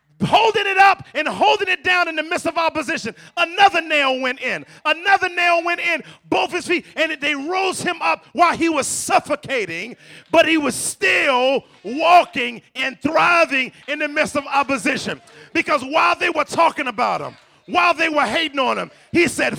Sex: male